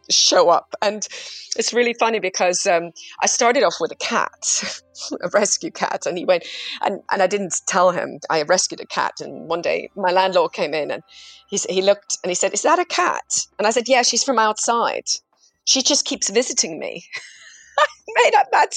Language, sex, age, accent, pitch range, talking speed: English, female, 40-59, British, 195-290 Hz, 205 wpm